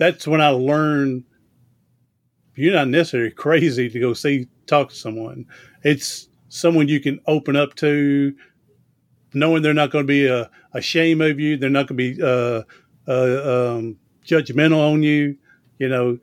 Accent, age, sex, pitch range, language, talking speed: American, 40-59, male, 130-160 Hz, English, 165 wpm